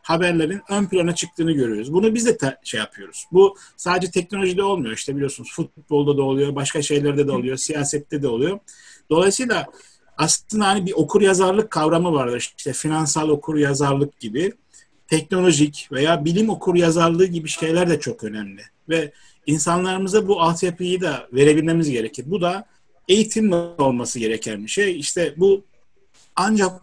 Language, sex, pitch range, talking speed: Turkish, male, 145-190 Hz, 145 wpm